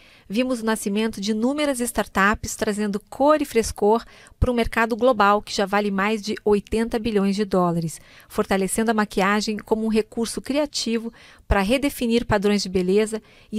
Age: 40-59